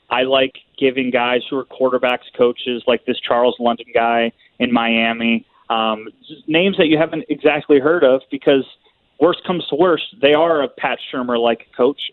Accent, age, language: American, 30-49, English